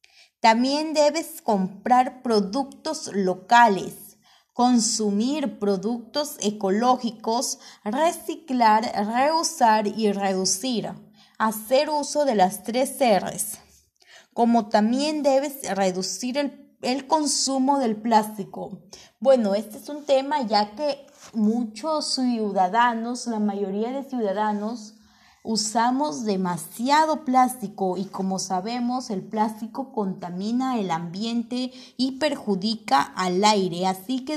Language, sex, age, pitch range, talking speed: Spanish, female, 20-39, 205-265 Hz, 100 wpm